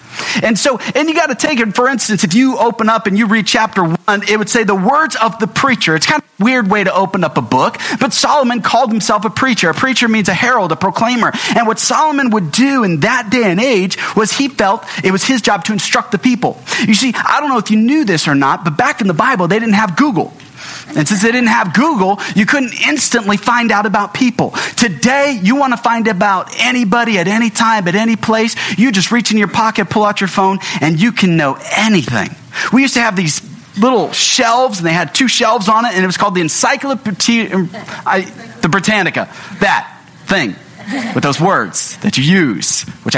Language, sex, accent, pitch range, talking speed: English, male, American, 190-245 Hz, 230 wpm